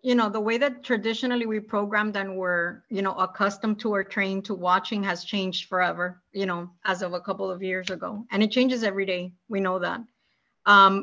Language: English